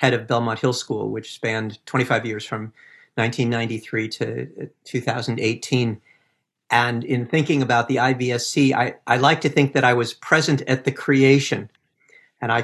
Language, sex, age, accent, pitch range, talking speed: English, male, 50-69, American, 120-140 Hz, 155 wpm